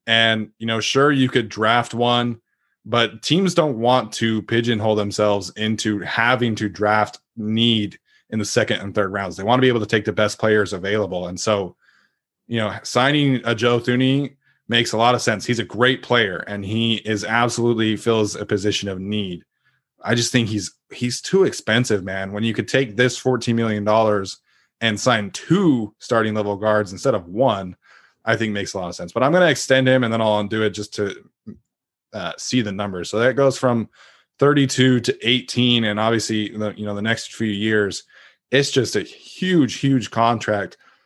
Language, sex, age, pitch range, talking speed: English, male, 20-39, 105-125 Hz, 195 wpm